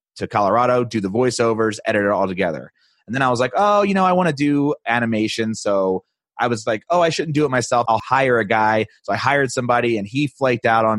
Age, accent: 30-49, American